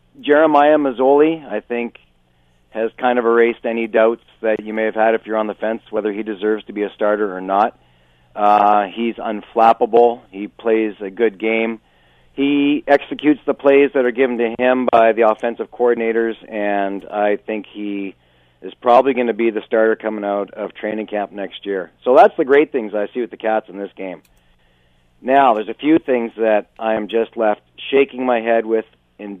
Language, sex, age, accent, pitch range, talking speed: English, male, 40-59, American, 105-135 Hz, 195 wpm